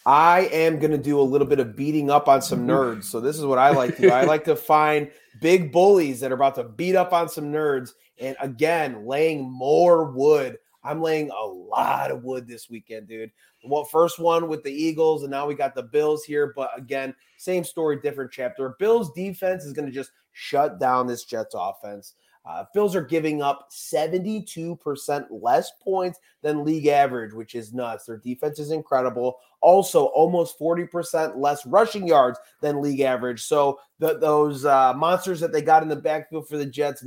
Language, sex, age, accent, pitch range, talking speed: English, male, 30-49, American, 130-165 Hz, 195 wpm